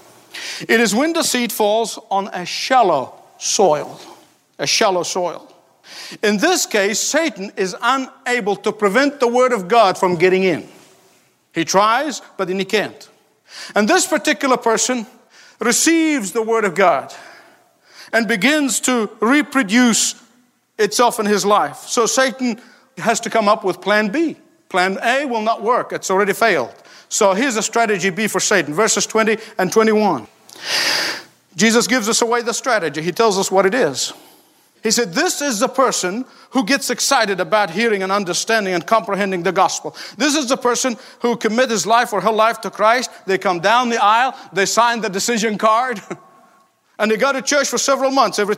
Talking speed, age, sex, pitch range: 175 wpm, 50-69, male, 195-250 Hz